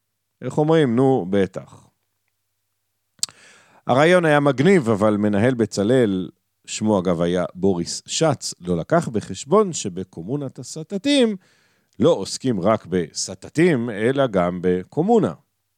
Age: 50-69